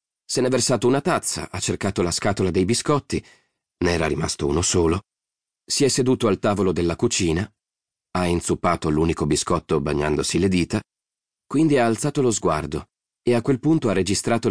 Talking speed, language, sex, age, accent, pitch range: 175 wpm, Italian, male, 30-49, native, 85-110 Hz